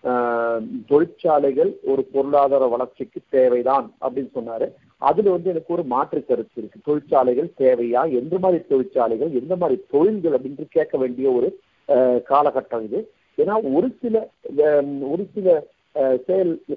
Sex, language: male, Tamil